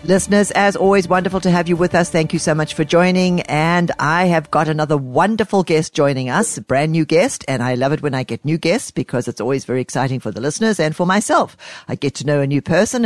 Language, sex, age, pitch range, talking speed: English, female, 60-79, 140-200 Hz, 255 wpm